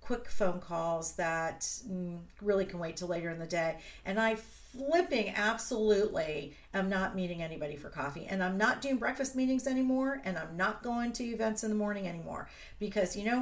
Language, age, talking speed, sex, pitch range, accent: English, 40-59, 190 wpm, female, 180-235 Hz, American